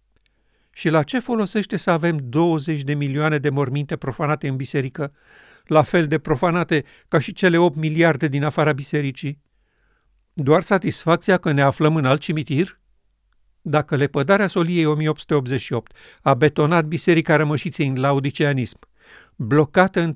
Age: 50-69